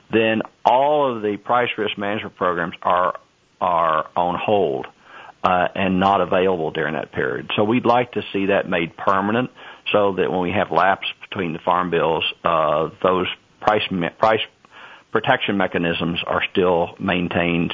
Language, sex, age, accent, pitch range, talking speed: English, male, 50-69, American, 95-105 Hz, 160 wpm